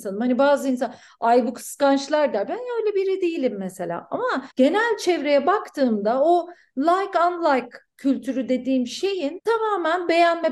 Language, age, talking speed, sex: Turkish, 40-59, 135 wpm, female